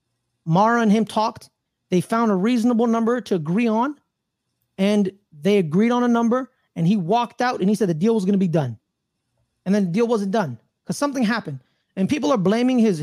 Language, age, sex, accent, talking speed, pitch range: English, 30-49, male, American, 210 wpm, 175-230 Hz